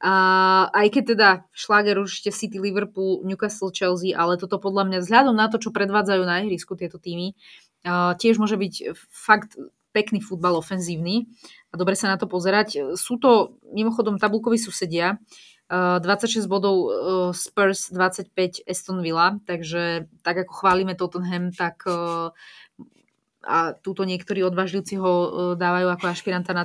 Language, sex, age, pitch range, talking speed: Slovak, female, 20-39, 180-210 Hz, 135 wpm